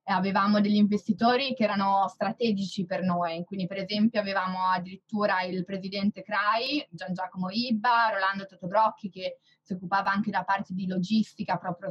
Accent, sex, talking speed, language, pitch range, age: native, female, 150 wpm, Italian, 185-215 Hz, 20-39